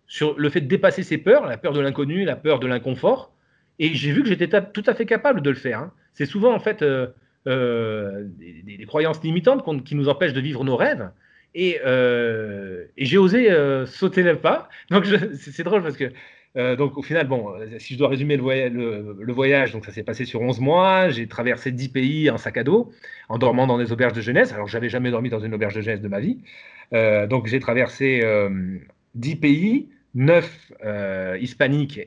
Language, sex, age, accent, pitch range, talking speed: French, male, 30-49, French, 120-160 Hz, 230 wpm